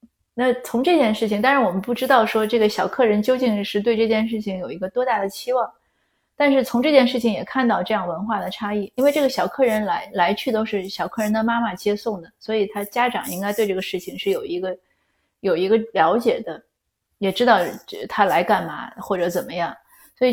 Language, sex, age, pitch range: Chinese, female, 30-49, 190-235 Hz